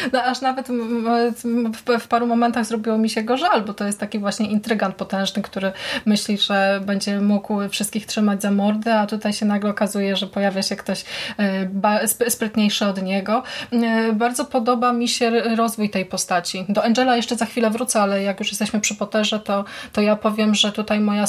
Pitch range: 205-240 Hz